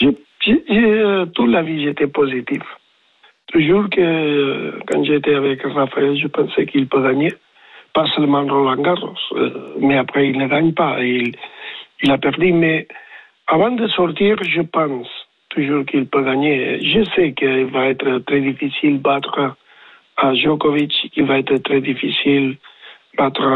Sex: male